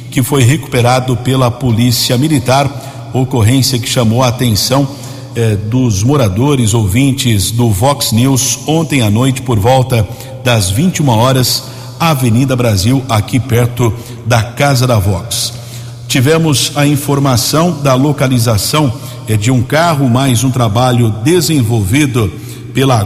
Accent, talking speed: Brazilian, 130 wpm